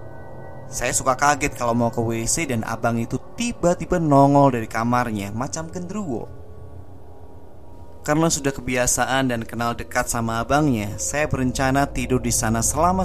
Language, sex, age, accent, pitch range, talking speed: Indonesian, male, 20-39, native, 105-125 Hz, 140 wpm